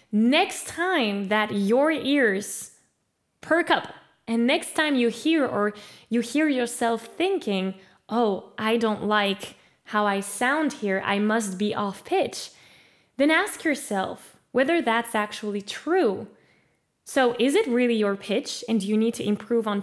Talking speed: 150 wpm